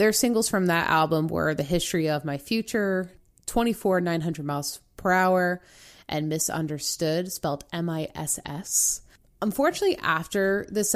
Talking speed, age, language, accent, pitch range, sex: 125 wpm, 20-39, English, American, 160-205 Hz, female